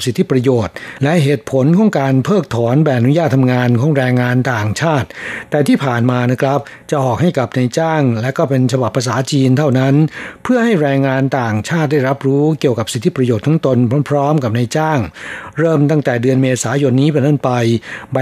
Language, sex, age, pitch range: Thai, male, 60-79, 125-150 Hz